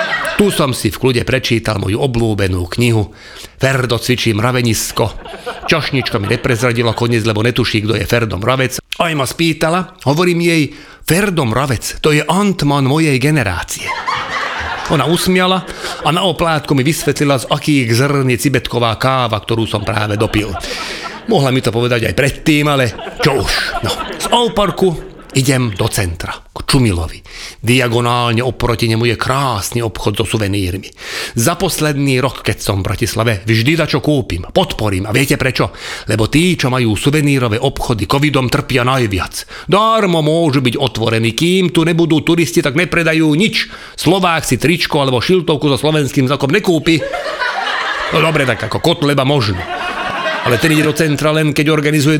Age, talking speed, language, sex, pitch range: 40-59, 155 wpm, Czech, male, 115-155 Hz